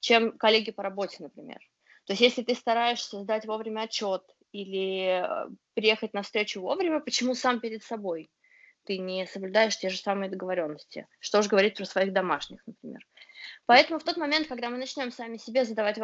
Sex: female